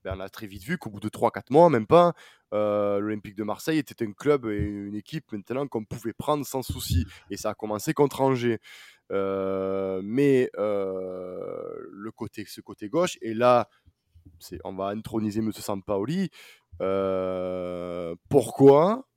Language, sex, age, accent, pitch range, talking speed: French, male, 20-39, French, 105-150 Hz, 165 wpm